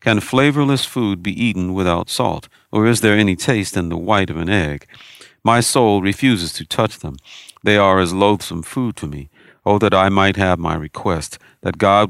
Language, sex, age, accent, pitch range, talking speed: English, male, 50-69, American, 85-110 Hz, 200 wpm